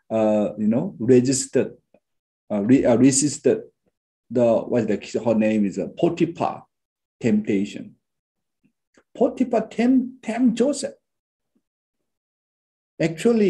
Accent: Malaysian